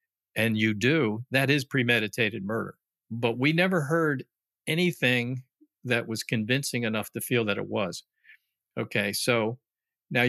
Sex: male